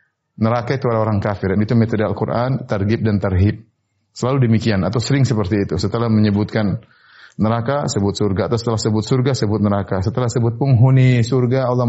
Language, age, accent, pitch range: Indonesian, 30-49, native, 110-140 Hz